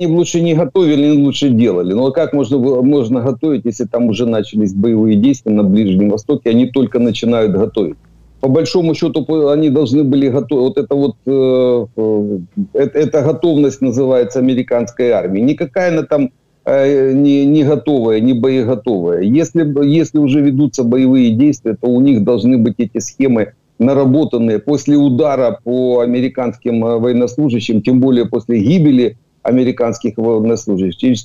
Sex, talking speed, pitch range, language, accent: male, 155 wpm, 120-145 Hz, Ukrainian, native